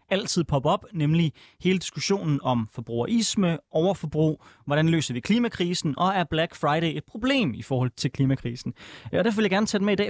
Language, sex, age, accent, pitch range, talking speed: Danish, male, 20-39, native, 145-190 Hz, 195 wpm